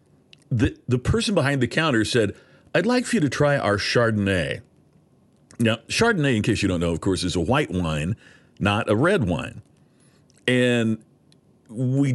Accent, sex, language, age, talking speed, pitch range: American, male, English, 50-69, 170 wpm, 115-160 Hz